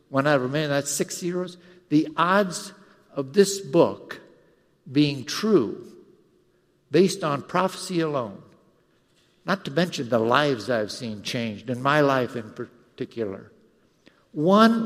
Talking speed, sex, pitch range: 135 wpm, male, 125-175 Hz